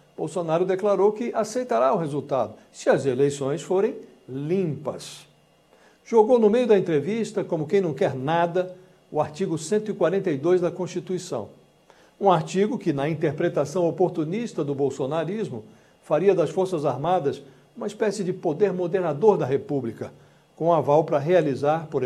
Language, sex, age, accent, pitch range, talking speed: English, male, 60-79, Brazilian, 145-185 Hz, 135 wpm